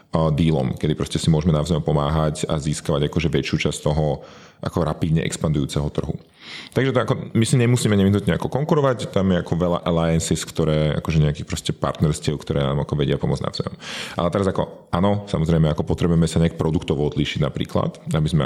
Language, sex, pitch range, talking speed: Slovak, male, 80-100 Hz, 180 wpm